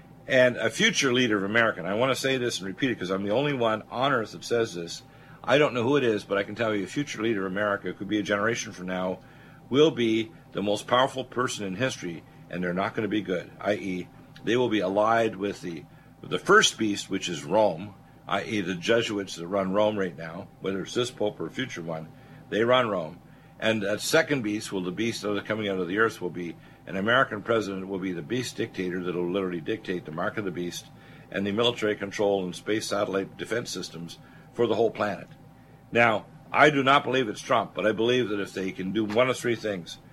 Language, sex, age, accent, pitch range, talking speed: English, male, 50-69, American, 95-120 Hz, 240 wpm